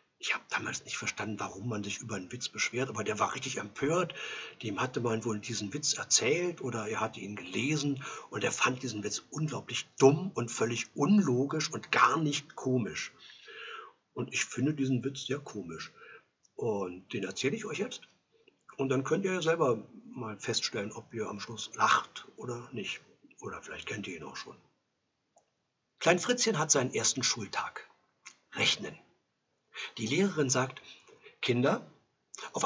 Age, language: 60-79, German